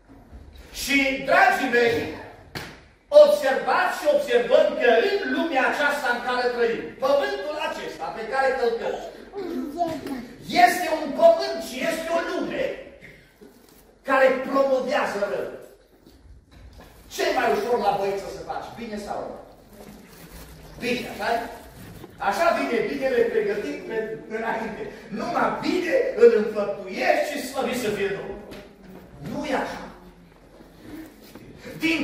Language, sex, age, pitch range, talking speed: Romanian, male, 40-59, 245-330 Hz, 110 wpm